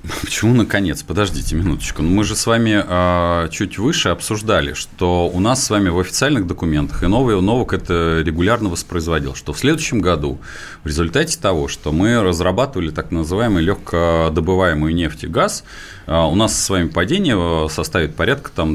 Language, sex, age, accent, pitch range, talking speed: Russian, male, 30-49, native, 85-110 Hz, 155 wpm